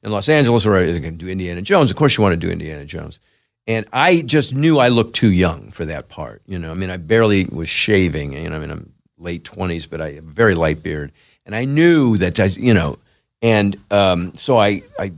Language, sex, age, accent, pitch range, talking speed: English, male, 50-69, American, 85-115 Hz, 255 wpm